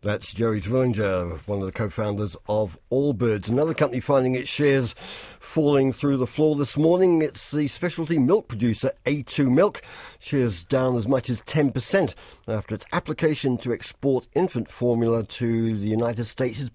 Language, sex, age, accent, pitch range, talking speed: English, male, 50-69, British, 115-140 Hz, 165 wpm